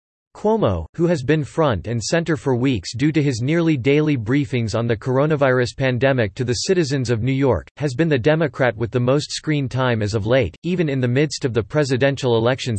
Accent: American